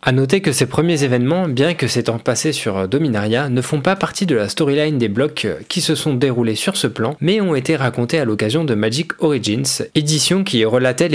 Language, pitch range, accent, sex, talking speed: French, 120-155 Hz, French, male, 215 wpm